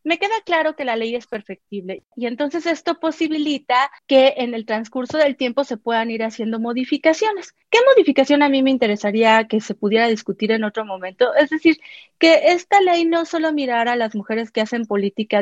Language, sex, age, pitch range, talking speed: Spanish, female, 30-49, 220-315 Hz, 195 wpm